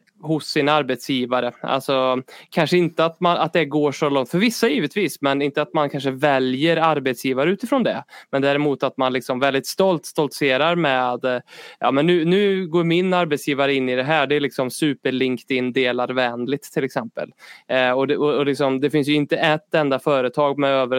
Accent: native